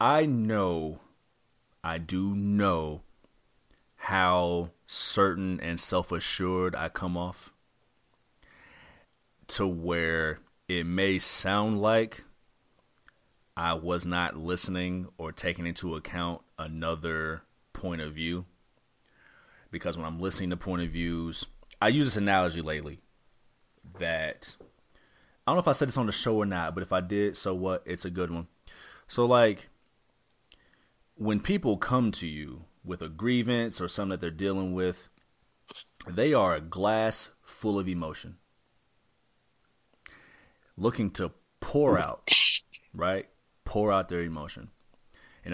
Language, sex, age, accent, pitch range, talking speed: English, male, 30-49, American, 85-110 Hz, 130 wpm